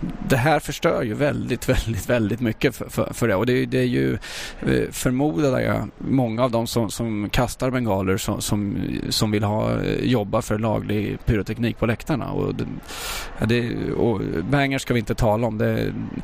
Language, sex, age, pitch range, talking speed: English, male, 20-39, 105-125 Hz, 170 wpm